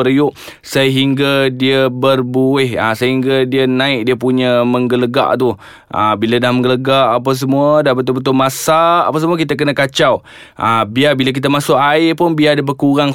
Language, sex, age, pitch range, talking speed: Malay, male, 20-39, 115-145 Hz, 155 wpm